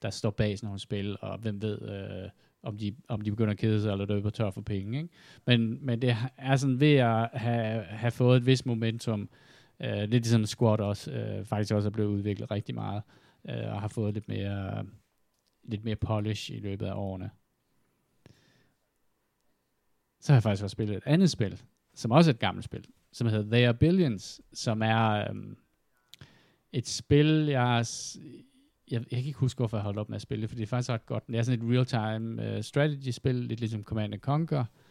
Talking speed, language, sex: 210 wpm, Danish, male